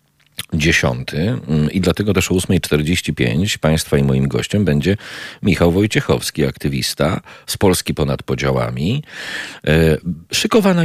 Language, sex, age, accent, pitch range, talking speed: Polish, male, 40-59, native, 70-90 Hz, 110 wpm